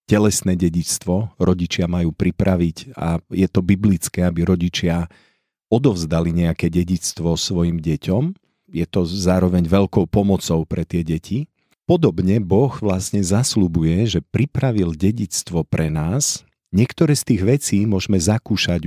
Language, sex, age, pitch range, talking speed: Slovak, male, 50-69, 85-105 Hz, 125 wpm